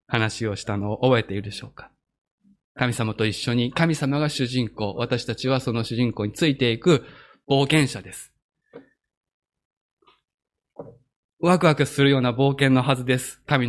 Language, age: Japanese, 20-39